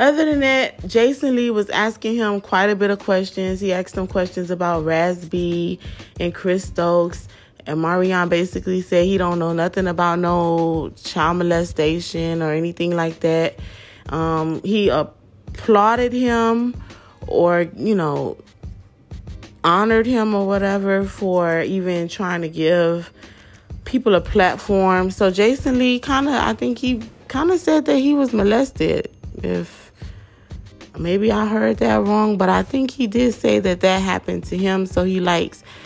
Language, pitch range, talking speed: English, 160-205 Hz, 155 wpm